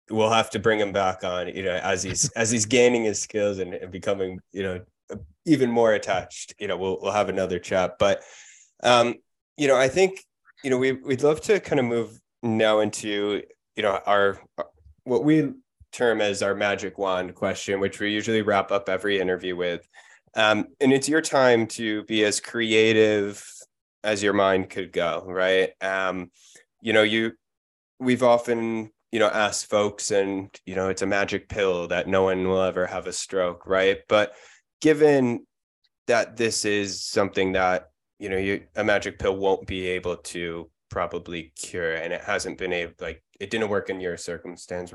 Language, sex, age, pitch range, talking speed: English, male, 20-39, 95-115 Hz, 185 wpm